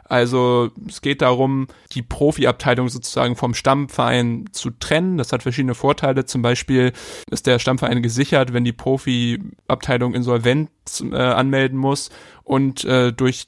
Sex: male